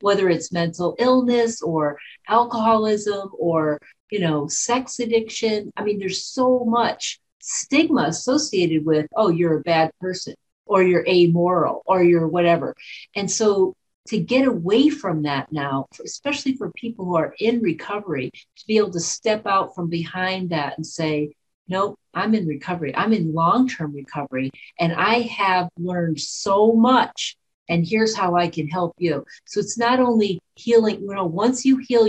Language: English